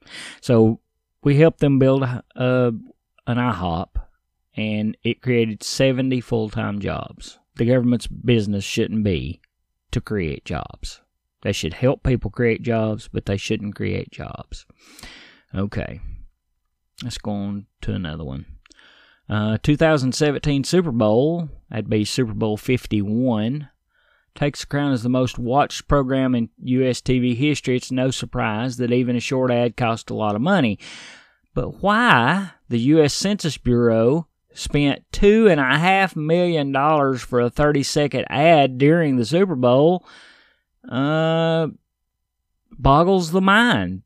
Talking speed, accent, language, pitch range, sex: 130 wpm, American, English, 110-145 Hz, male